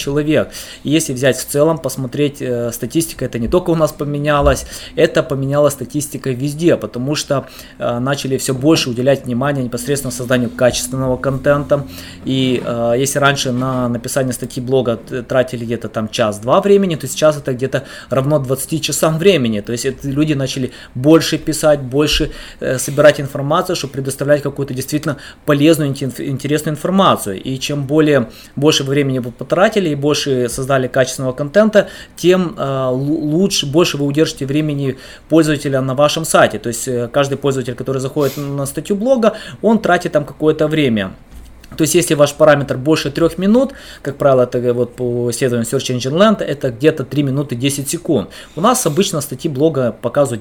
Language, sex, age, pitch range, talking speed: Russian, male, 20-39, 130-155 Hz, 160 wpm